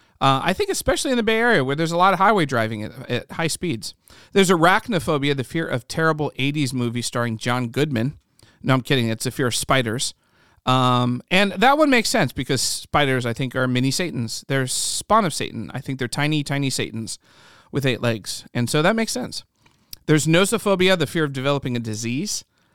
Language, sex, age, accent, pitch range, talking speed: English, male, 40-59, American, 120-150 Hz, 200 wpm